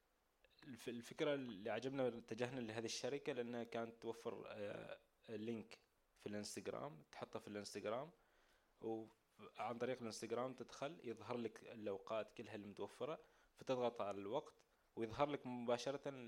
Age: 20-39